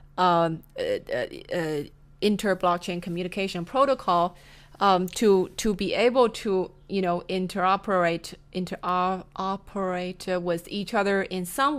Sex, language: female, English